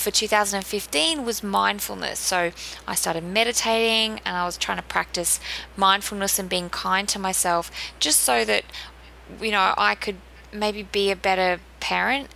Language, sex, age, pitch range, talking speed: English, female, 20-39, 175-225 Hz, 155 wpm